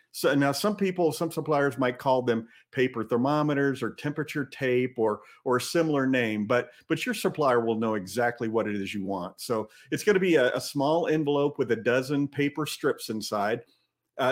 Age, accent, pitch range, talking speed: 50-69, American, 120-160 Hz, 195 wpm